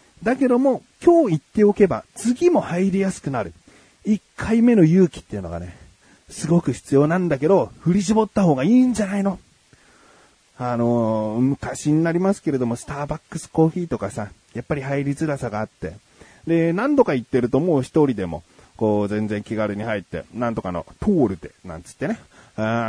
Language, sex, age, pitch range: Japanese, male, 30-49, 125-200 Hz